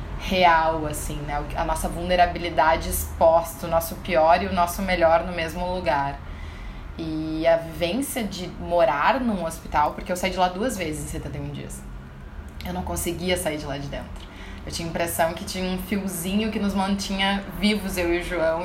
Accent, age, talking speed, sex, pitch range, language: Brazilian, 20-39, 190 wpm, female, 160-220 Hz, Portuguese